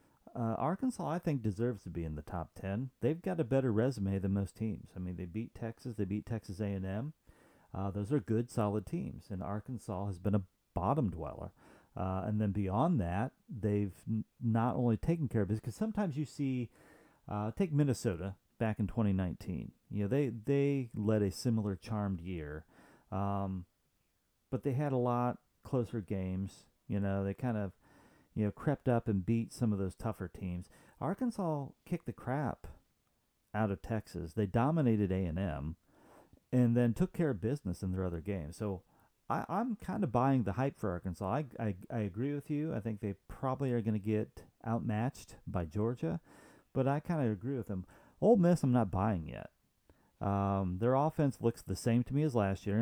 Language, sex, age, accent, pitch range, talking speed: English, male, 40-59, American, 100-130 Hz, 190 wpm